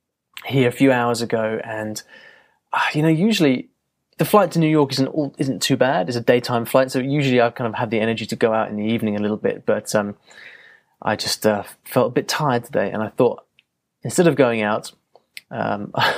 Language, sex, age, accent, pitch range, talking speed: English, male, 20-39, British, 110-160 Hz, 215 wpm